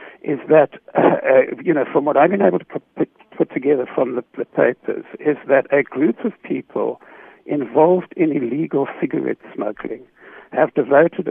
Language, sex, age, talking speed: English, male, 60-79, 170 wpm